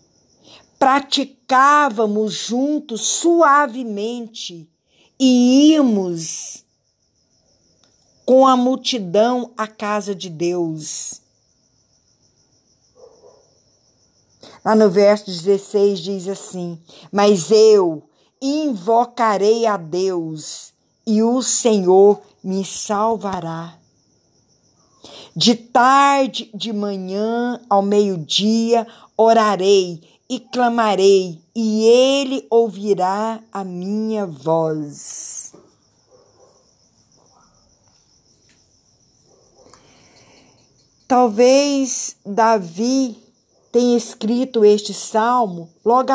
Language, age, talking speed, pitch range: Portuguese, 50-69, 65 wpm, 190-245 Hz